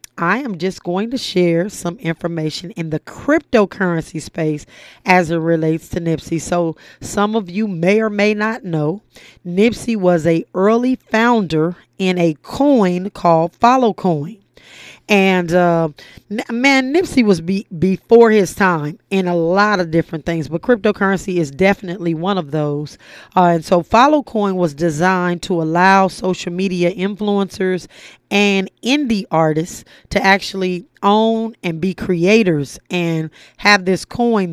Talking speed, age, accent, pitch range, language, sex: 150 wpm, 30-49, American, 170-200 Hz, English, female